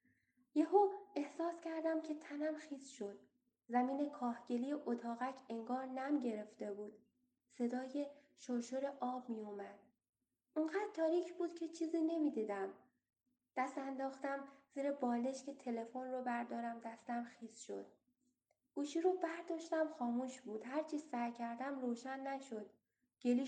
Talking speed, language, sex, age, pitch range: 120 wpm, Persian, female, 10-29, 230-295 Hz